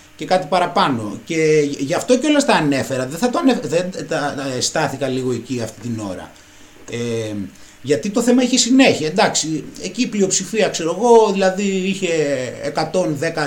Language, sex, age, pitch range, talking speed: Greek, male, 30-49, 145-240 Hz, 155 wpm